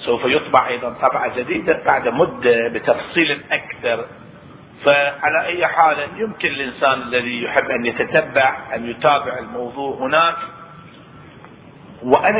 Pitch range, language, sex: 125-160 Hz, Arabic, male